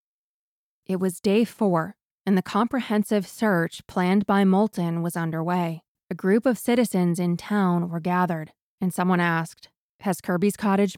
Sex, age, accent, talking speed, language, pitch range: female, 20-39, American, 150 wpm, English, 175-205 Hz